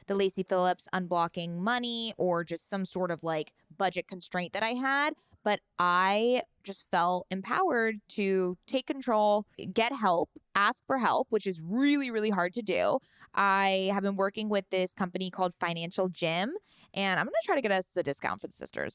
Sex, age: female, 20-39